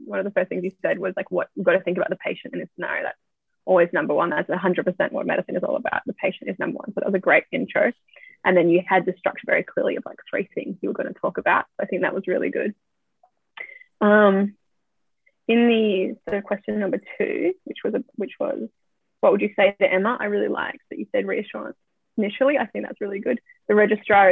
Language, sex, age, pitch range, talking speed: English, female, 10-29, 190-250 Hz, 245 wpm